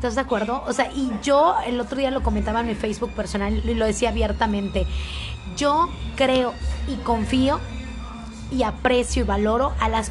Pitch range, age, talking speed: 205-260 Hz, 20-39, 180 wpm